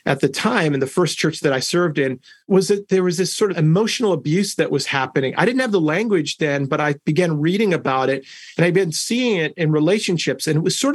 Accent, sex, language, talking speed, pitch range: American, male, English, 250 wpm, 150-190 Hz